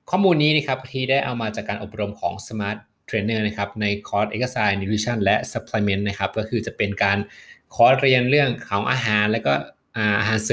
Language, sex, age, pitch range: Thai, male, 20-39, 100-125 Hz